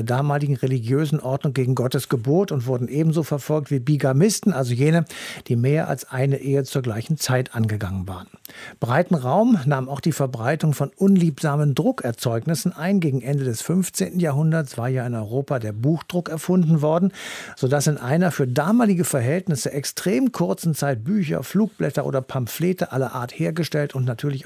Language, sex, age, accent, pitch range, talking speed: German, male, 50-69, German, 130-175 Hz, 160 wpm